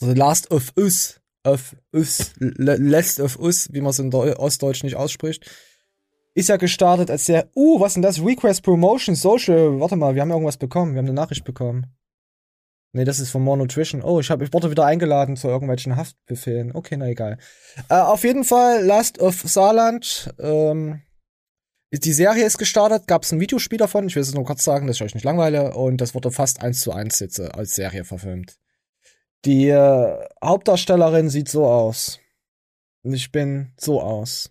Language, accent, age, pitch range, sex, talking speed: German, German, 20-39, 125-165 Hz, male, 195 wpm